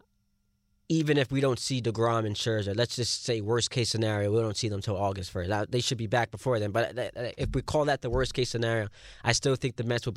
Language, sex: English, male